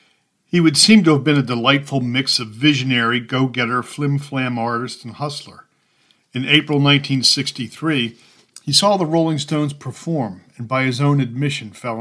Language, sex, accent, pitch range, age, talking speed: English, male, American, 120-145 Hz, 50-69, 155 wpm